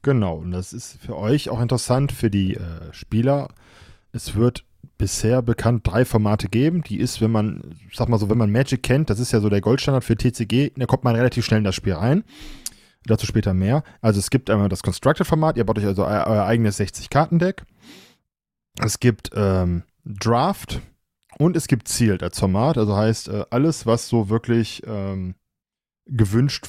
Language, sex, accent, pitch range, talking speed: German, male, German, 110-135 Hz, 195 wpm